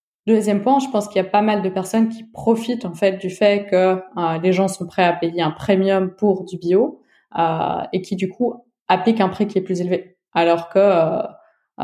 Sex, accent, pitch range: female, French, 175-205 Hz